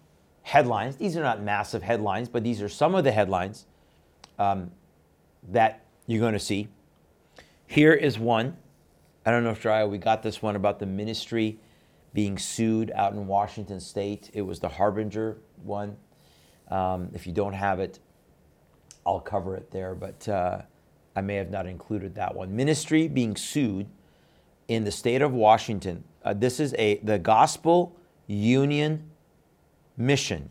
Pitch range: 100-130 Hz